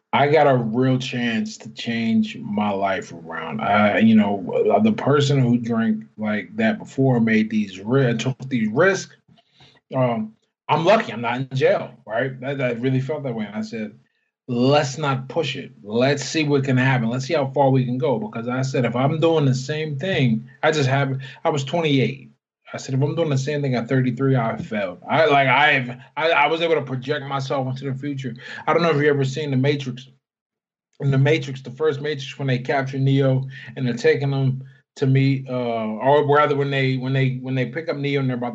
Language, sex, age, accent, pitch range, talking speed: English, male, 20-39, American, 125-150 Hz, 215 wpm